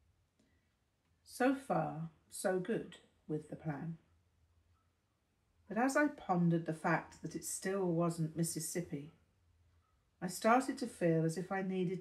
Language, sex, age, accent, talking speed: English, female, 50-69, British, 130 wpm